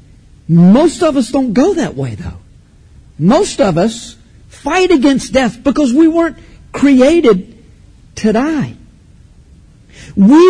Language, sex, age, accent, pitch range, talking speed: English, male, 50-69, American, 170-255 Hz, 120 wpm